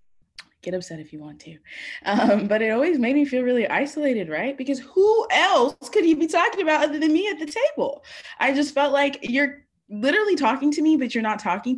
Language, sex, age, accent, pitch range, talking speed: English, female, 20-39, American, 210-310 Hz, 220 wpm